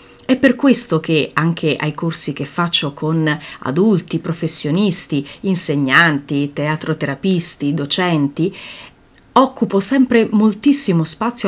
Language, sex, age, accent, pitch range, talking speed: Italian, female, 30-49, native, 155-220 Hz, 100 wpm